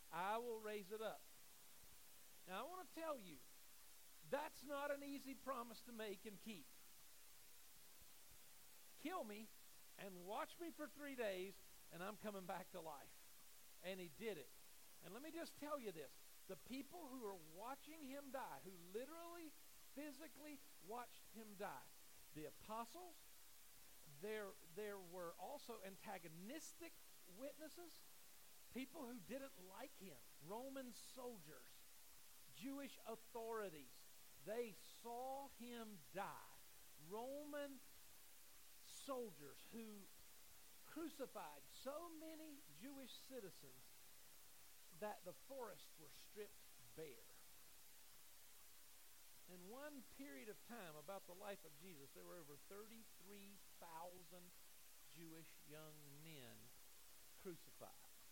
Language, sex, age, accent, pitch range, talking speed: English, male, 50-69, American, 185-275 Hz, 115 wpm